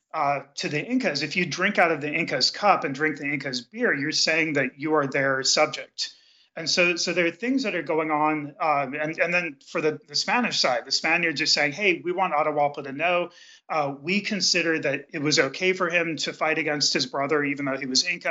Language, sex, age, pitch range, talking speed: English, male, 30-49, 140-170 Hz, 235 wpm